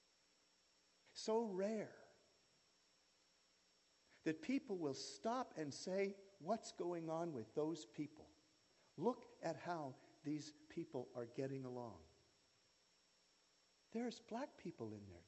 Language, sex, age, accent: English, male, 50-69, American